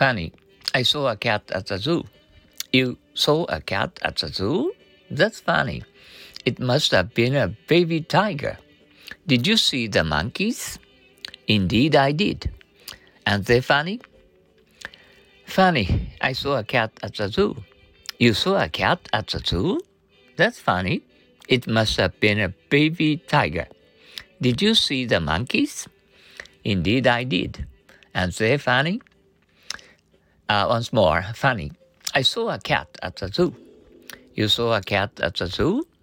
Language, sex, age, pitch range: Japanese, male, 50-69, 100-155 Hz